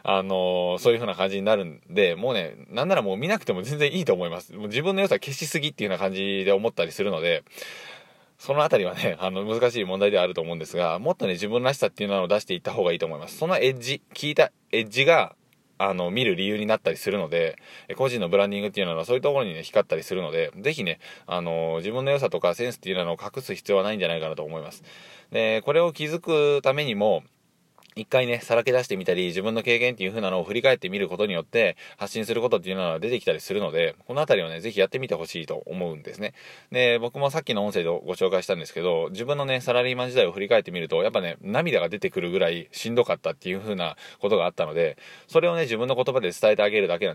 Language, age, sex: Japanese, 20-39, male